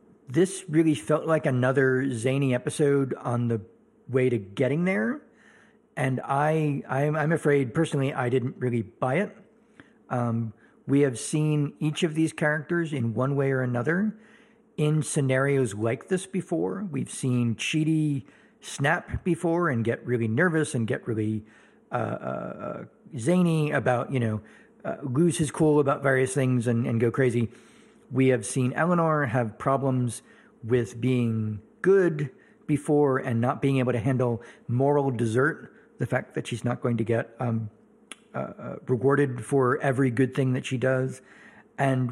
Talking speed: 155 wpm